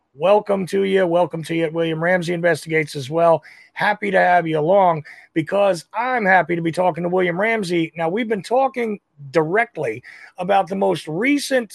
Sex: male